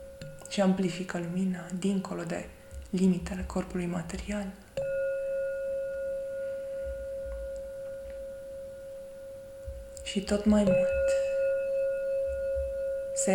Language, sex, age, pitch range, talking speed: Romanian, female, 20-39, 180-275 Hz, 60 wpm